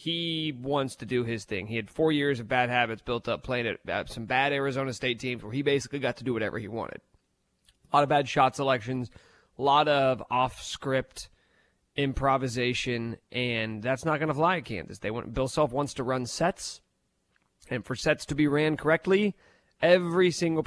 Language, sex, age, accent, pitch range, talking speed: English, male, 30-49, American, 120-155 Hz, 190 wpm